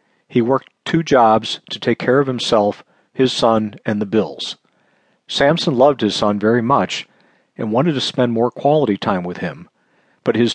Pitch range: 110-135 Hz